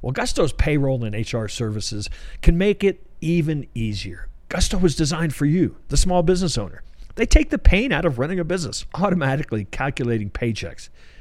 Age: 50-69